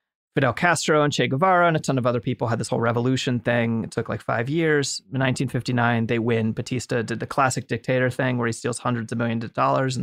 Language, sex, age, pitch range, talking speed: English, male, 30-49, 120-140 Hz, 240 wpm